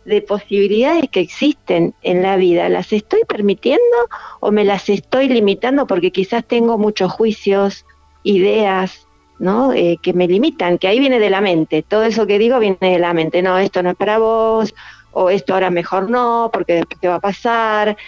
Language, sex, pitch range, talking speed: Spanish, female, 185-230 Hz, 190 wpm